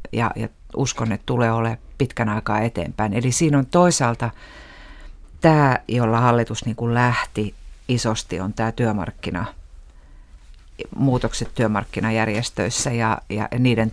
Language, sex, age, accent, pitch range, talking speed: Finnish, female, 50-69, native, 110-135 Hz, 115 wpm